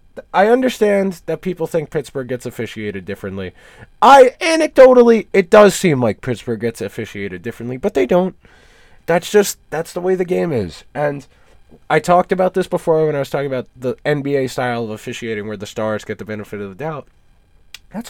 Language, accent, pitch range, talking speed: English, American, 135-210 Hz, 185 wpm